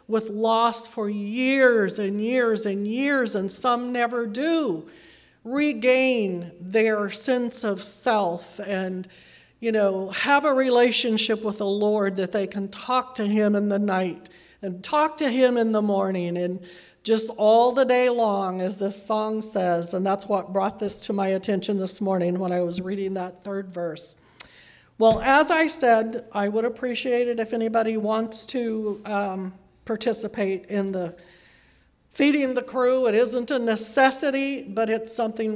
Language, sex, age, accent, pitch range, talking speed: English, female, 50-69, American, 190-240 Hz, 160 wpm